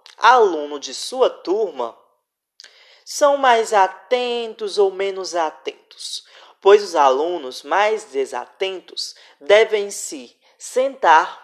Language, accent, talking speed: Portuguese, Brazilian, 95 wpm